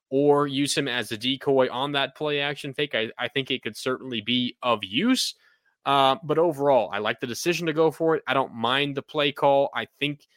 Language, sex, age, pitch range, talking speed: English, male, 20-39, 125-150 Hz, 225 wpm